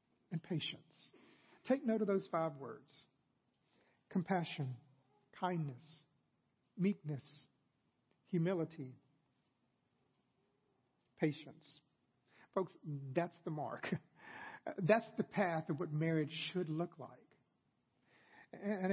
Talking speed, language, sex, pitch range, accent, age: 85 wpm, English, male, 155-210 Hz, American, 50-69